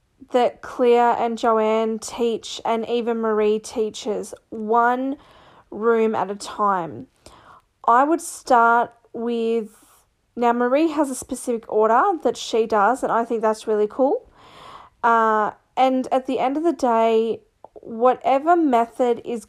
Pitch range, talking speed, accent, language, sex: 220-250 Hz, 135 wpm, Australian, English, female